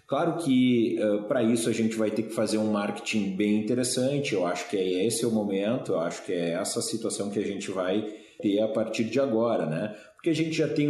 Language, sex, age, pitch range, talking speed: Portuguese, male, 30-49, 105-120 Hz, 240 wpm